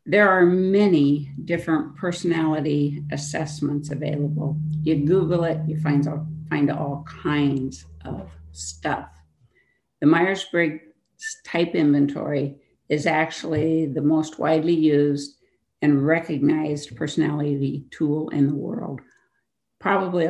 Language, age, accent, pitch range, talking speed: English, 60-79, American, 150-175 Hz, 105 wpm